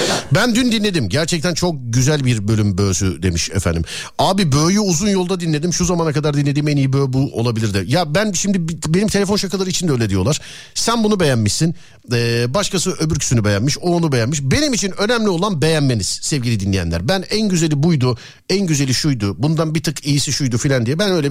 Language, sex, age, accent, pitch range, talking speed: Turkish, male, 50-69, native, 120-180 Hz, 195 wpm